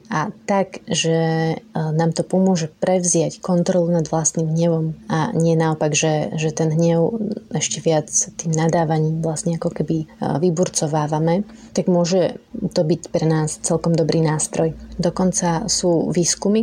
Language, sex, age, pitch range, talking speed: Slovak, female, 30-49, 160-185 Hz, 135 wpm